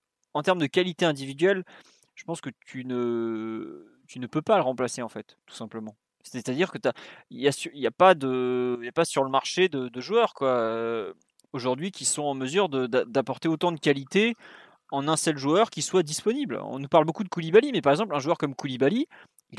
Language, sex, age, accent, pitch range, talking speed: French, male, 20-39, French, 135-185 Hz, 205 wpm